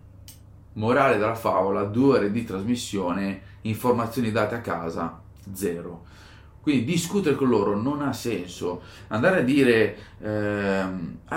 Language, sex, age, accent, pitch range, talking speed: Italian, male, 30-49, native, 100-135 Hz, 120 wpm